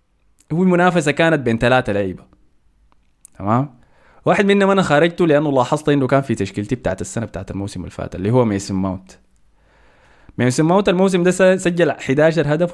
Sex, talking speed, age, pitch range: male, 165 wpm, 20-39, 105-160 Hz